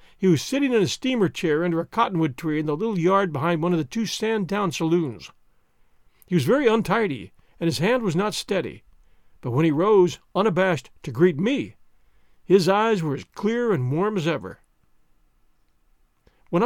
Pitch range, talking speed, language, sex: 155-210 Hz, 180 wpm, English, male